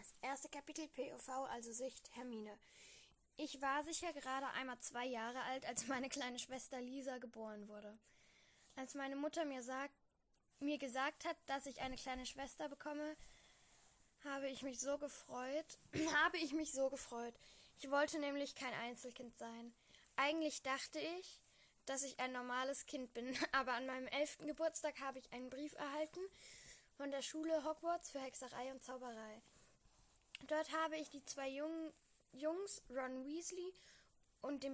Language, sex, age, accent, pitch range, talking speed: German, female, 10-29, German, 250-300 Hz, 155 wpm